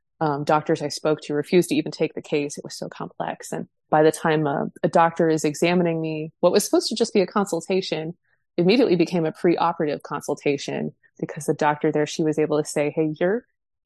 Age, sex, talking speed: 20-39, female, 210 wpm